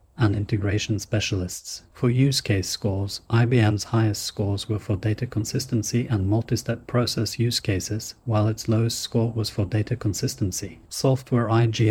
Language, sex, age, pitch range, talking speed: English, male, 40-59, 105-115 Hz, 145 wpm